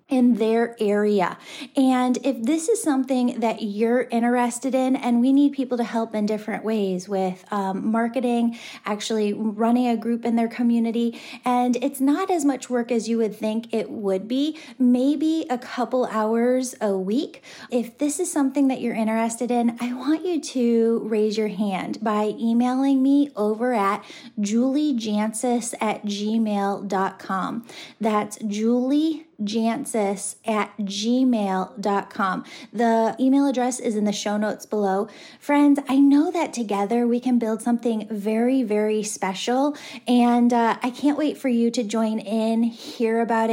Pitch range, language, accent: 215-255 Hz, English, American